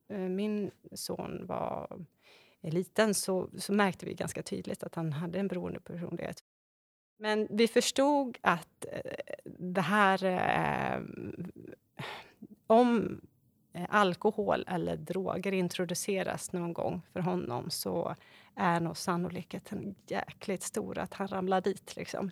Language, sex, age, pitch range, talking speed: Swedish, female, 30-49, 175-205 Hz, 115 wpm